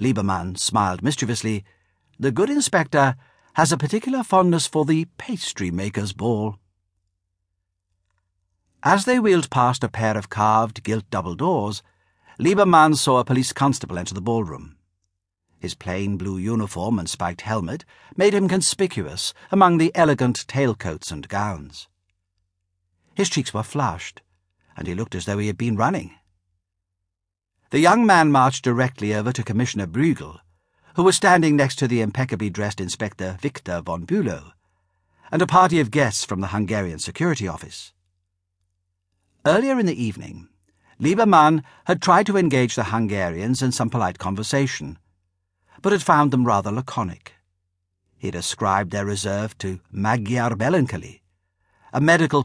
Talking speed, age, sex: 140 wpm, 60-79, male